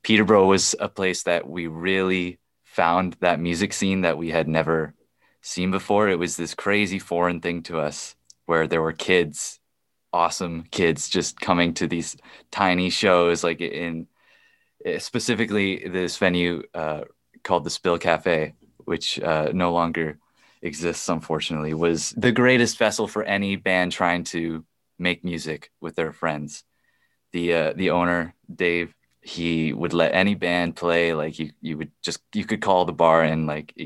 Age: 20-39